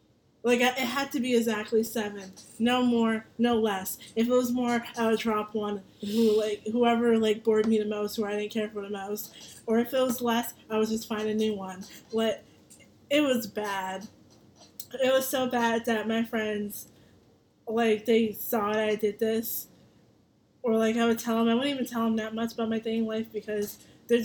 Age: 20-39